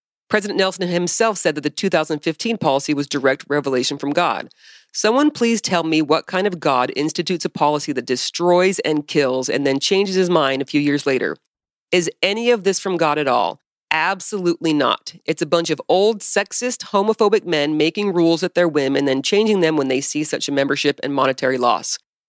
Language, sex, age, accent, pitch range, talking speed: English, female, 40-59, American, 145-180 Hz, 195 wpm